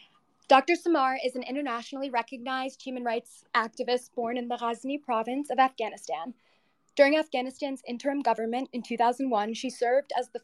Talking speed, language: 145 wpm, English